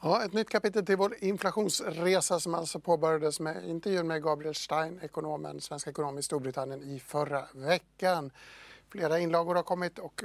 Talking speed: 160 wpm